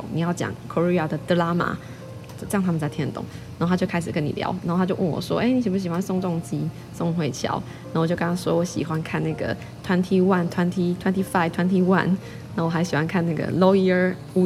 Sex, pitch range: female, 155-180 Hz